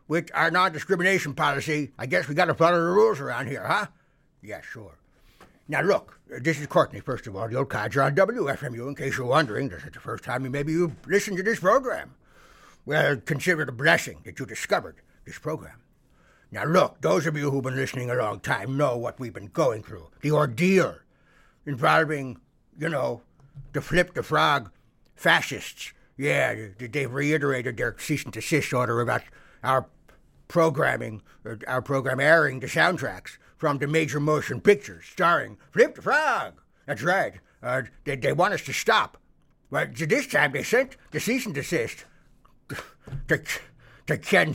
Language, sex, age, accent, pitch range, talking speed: English, male, 60-79, American, 130-160 Hz, 165 wpm